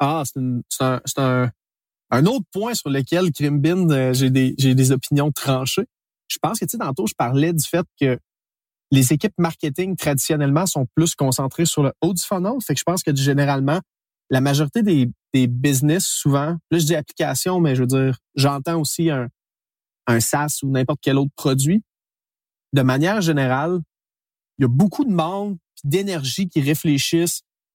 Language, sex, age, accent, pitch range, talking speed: French, male, 30-49, Canadian, 135-170 Hz, 185 wpm